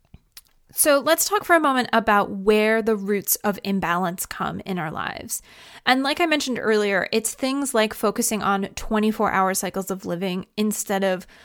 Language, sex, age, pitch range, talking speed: English, female, 20-39, 200-240 Hz, 170 wpm